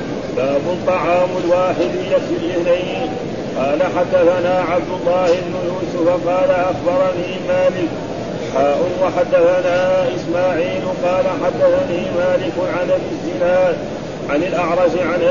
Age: 40-59